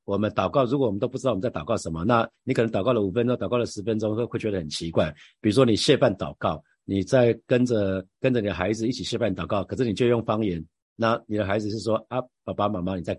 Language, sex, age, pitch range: Chinese, male, 50-69, 95-125 Hz